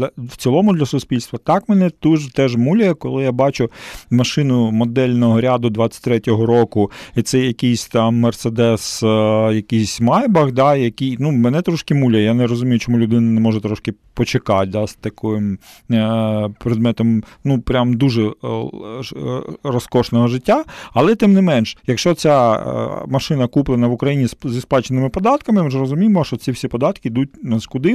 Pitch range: 115-145 Hz